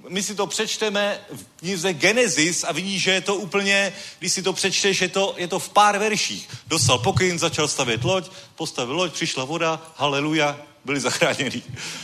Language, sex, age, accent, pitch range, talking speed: Czech, male, 40-59, native, 150-215 Hz, 180 wpm